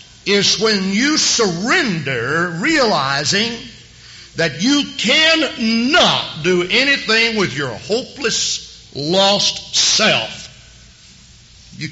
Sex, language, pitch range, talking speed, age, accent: male, English, 145-220 Hz, 85 wpm, 60-79, American